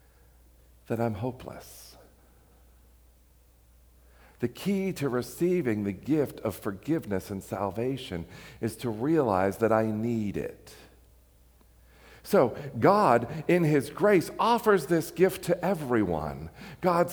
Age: 50-69